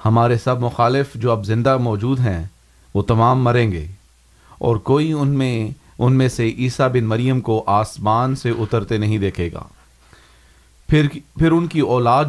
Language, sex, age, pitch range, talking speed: Urdu, male, 40-59, 105-140 Hz, 165 wpm